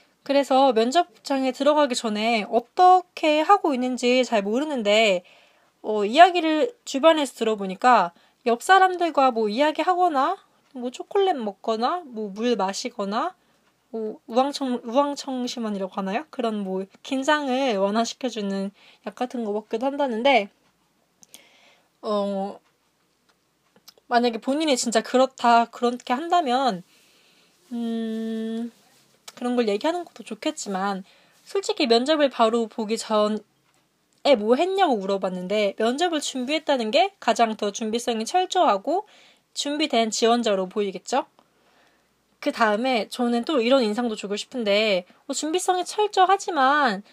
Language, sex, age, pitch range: Korean, female, 20-39, 220-290 Hz